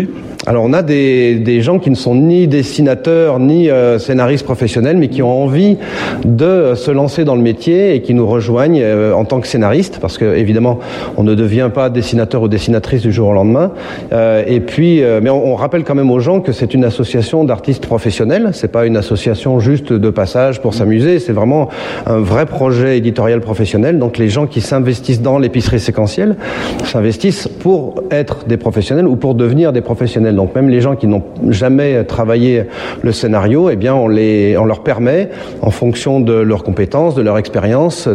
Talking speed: 190 wpm